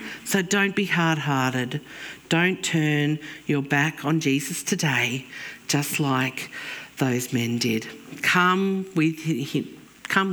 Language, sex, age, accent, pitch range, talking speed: English, female, 50-69, Australian, 130-190 Hz, 115 wpm